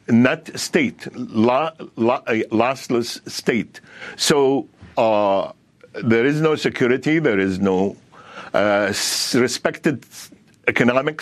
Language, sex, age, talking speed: English, male, 60-79, 95 wpm